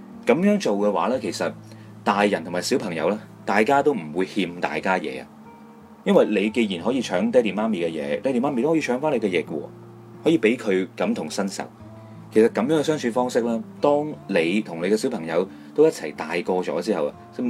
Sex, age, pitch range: male, 30-49, 100-140 Hz